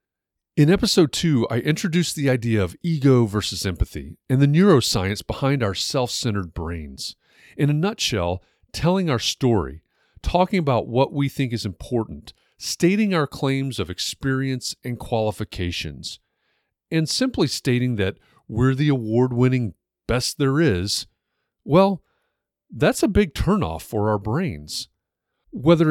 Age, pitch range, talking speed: 40-59, 105-155 Hz, 130 wpm